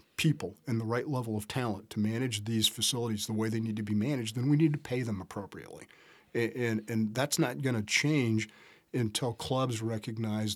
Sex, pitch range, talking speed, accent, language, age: male, 110-130 Hz, 205 wpm, American, English, 40-59